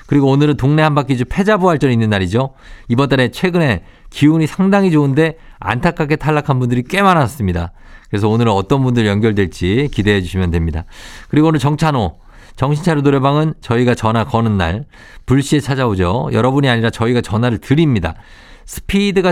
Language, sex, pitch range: Korean, male, 100-150 Hz